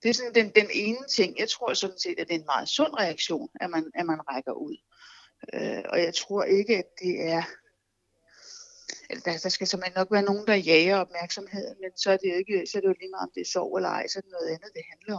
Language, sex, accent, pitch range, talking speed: Danish, female, native, 170-235 Hz, 265 wpm